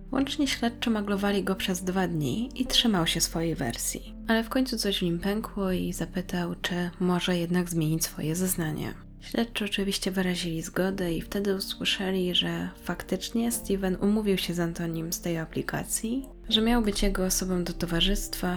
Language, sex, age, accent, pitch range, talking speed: Polish, female, 20-39, native, 175-210 Hz, 165 wpm